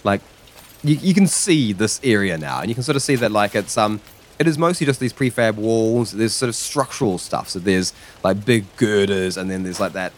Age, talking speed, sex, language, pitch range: 20-39, 235 wpm, male, English, 95-115 Hz